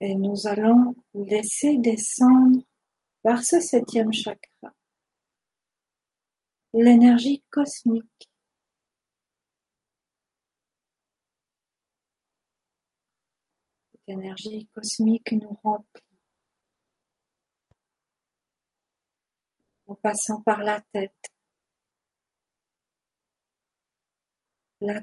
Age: 50-69